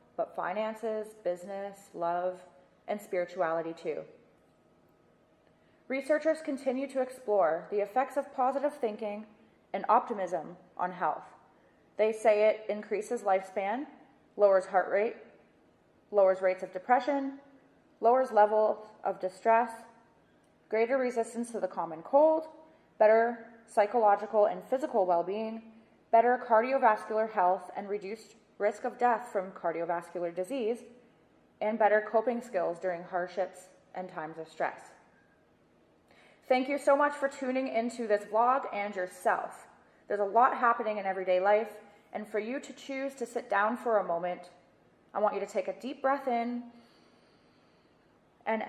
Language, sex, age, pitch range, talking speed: English, female, 20-39, 185-250 Hz, 130 wpm